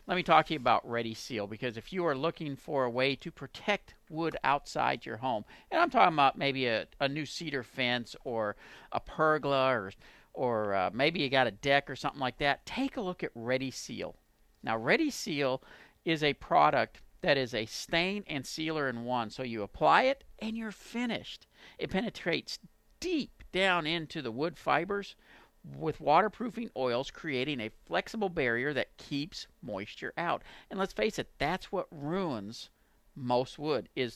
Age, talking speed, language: 50-69, 180 wpm, English